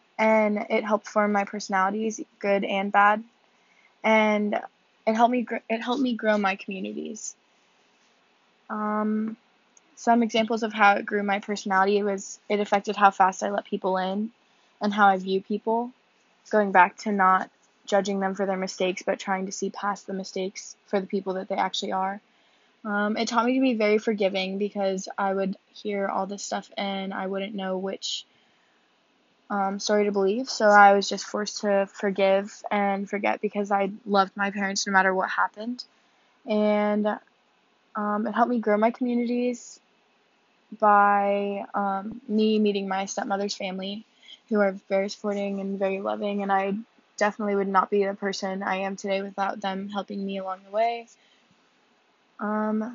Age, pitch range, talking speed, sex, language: 20-39, 195-215 Hz, 170 wpm, female, English